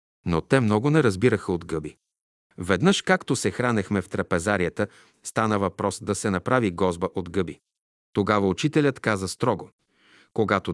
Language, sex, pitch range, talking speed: Bulgarian, male, 95-120 Hz, 145 wpm